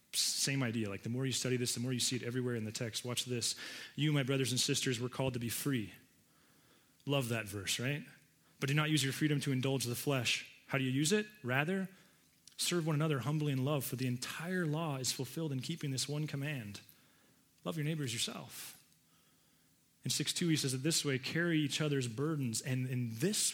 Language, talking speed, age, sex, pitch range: English, 215 wpm, 30-49, male, 120-145 Hz